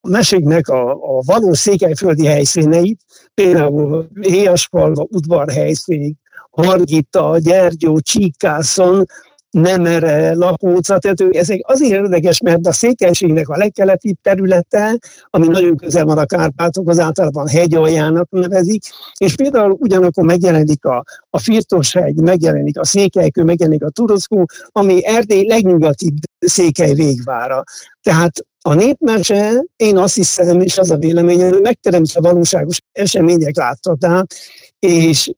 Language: Hungarian